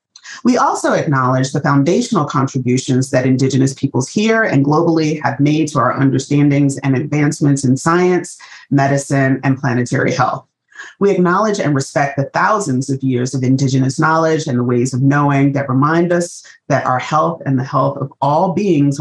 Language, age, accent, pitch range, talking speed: English, 30-49, American, 135-160 Hz, 165 wpm